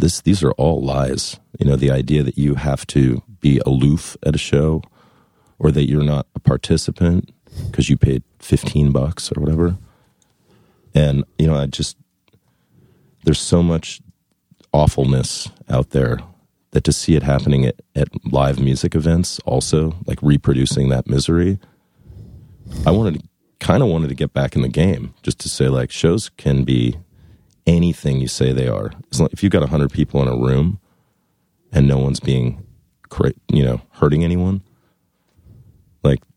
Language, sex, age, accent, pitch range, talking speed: English, male, 40-59, American, 65-80 Hz, 165 wpm